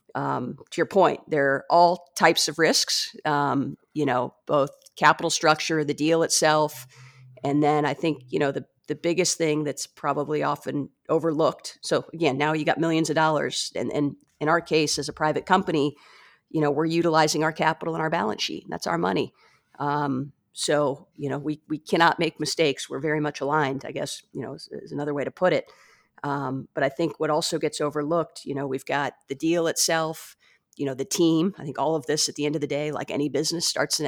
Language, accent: English, American